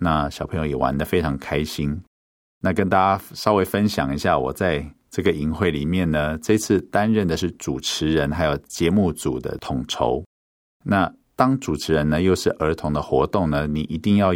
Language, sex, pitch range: Chinese, male, 75-100 Hz